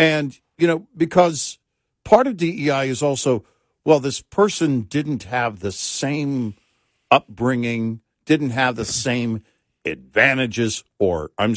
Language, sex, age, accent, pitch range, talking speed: English, male, 60-79, American, 115-155 Hz, 125 wpm